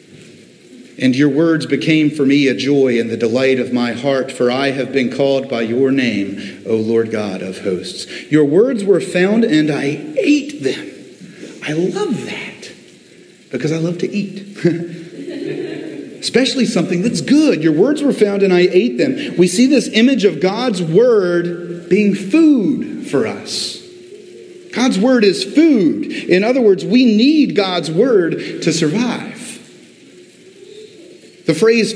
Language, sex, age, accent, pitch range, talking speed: English, male, 40-59, American, 160-240 Hz, 150 wpm